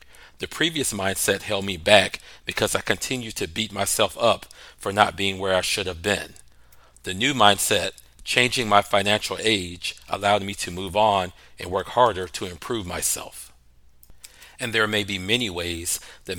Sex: male